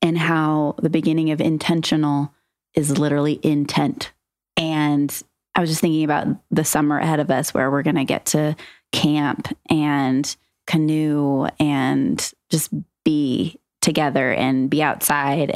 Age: 20-39